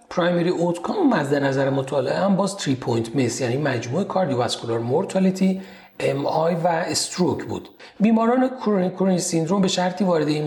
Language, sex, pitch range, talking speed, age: Persian, male, 140-190 Hz, 160 wpm, 40-59